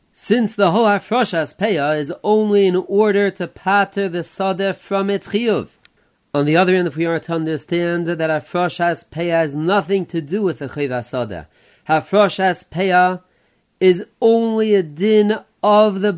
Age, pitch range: 30-49, 150-195 Hz